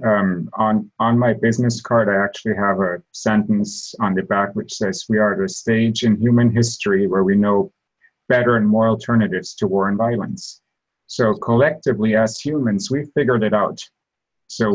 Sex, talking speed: male, 180 wpm